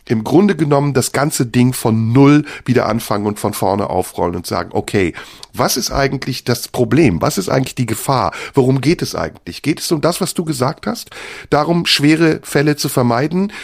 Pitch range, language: 135-175 Hz, German